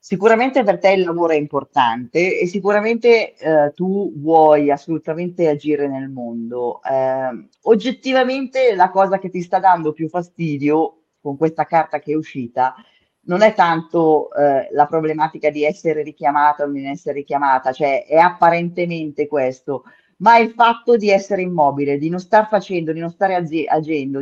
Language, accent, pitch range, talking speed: Italian, native, 145-195 Hz, 160 wpm